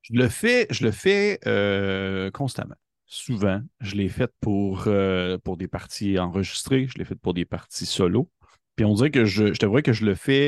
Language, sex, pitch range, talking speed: French, male, 95-120 Hz, 210 wpm